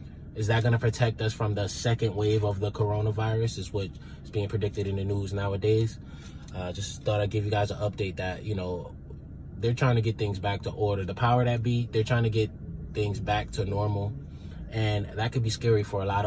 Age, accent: 20-39, American